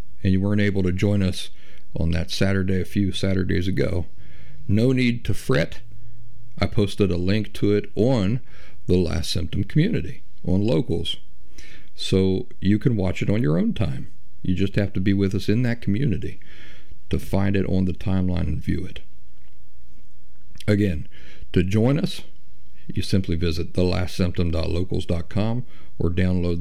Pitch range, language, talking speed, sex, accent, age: 85-105 Hz, English, 155 wpm, male, American, 50-69